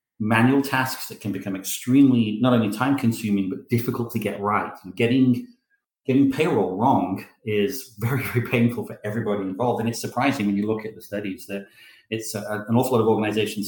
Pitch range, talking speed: 100-120 Hz, 195 wpm